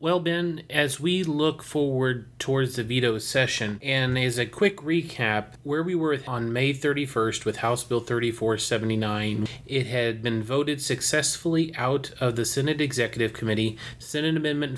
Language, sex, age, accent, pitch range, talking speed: English, male, 30-49, American, 115-135 Hz, 155 wpm